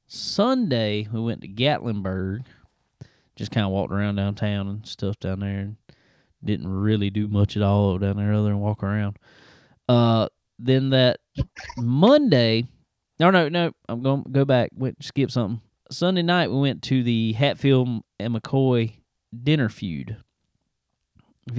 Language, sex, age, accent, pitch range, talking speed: English, male, 20-39, American, 105-135 Hz, 150 wpm